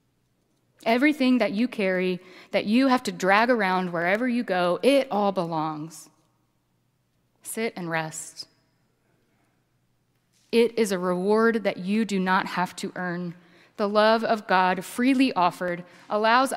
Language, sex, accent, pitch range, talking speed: English, female, American, 185-250 Hz, 135 wpm